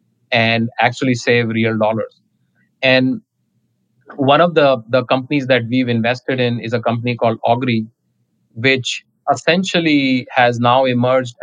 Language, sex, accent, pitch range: English, male, Indian, 115-130 Hz